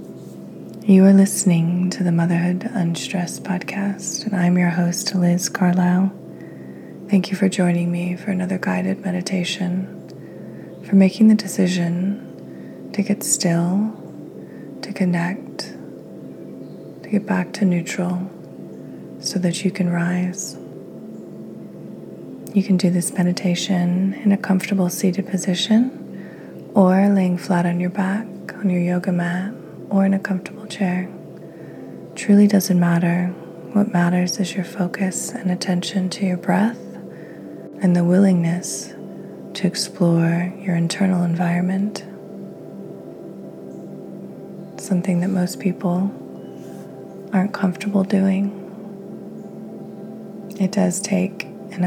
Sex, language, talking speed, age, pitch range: female, English, 115 wpm, 20-39, 175-195 Hz